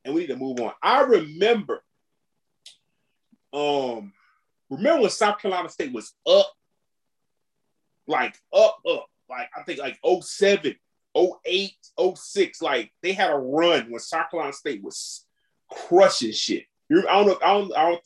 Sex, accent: male, American